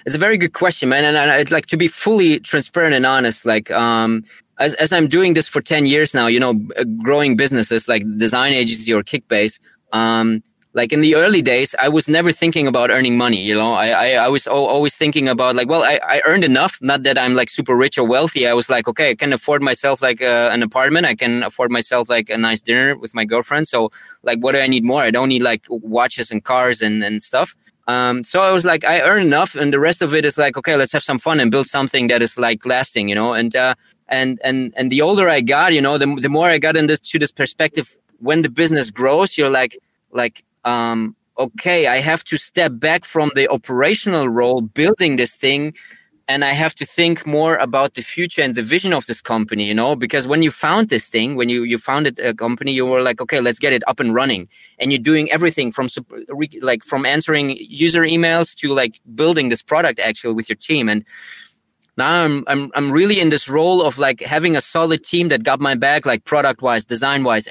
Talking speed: 235 wpm